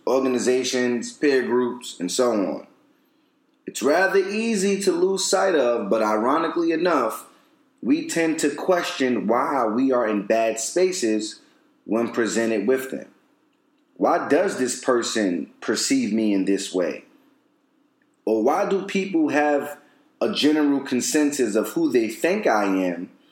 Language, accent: English, American